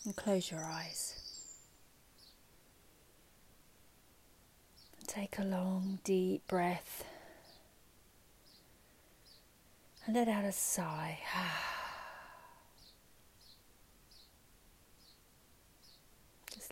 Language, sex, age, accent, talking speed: English, female, 30-49, British, 55 wpm